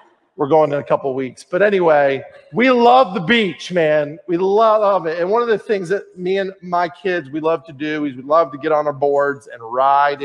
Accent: American